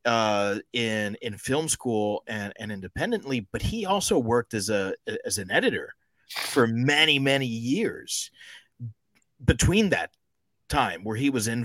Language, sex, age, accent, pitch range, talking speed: English, male, 40-59, American, 105-130 Hz, 145 wpm